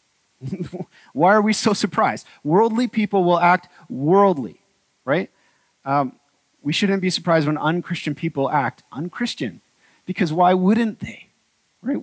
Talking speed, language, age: 130 wpm, English, 30-49